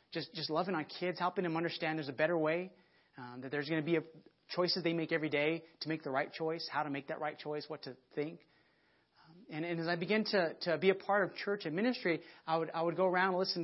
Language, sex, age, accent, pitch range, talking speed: English, male, 30-49, American, 150-185 Hz, 265 wpm